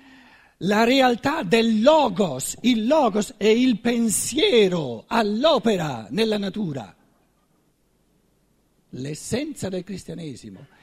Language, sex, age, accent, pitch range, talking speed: Italian, male, 60-79, native, 160-245 Hz, 85 wpm